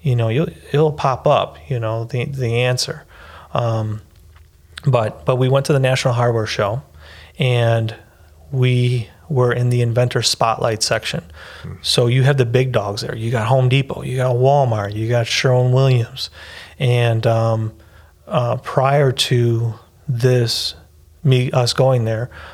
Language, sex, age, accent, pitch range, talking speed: English, male, 30-49, American, 115-130 Hz, 145 wpm